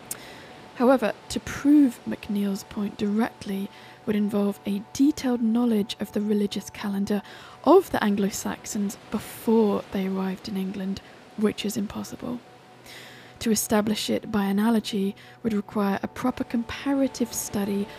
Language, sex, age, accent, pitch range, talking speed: English, female, 10-29, British, 200-230 Hz, 125 wpm